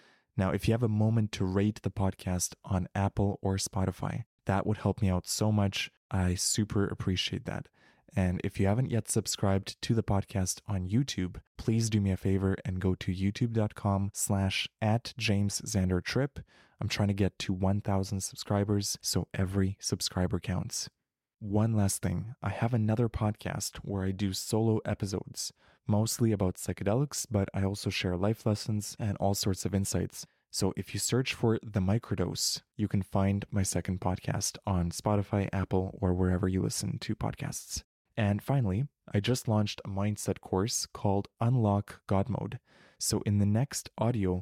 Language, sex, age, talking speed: English, male, 20-39, 170 wpm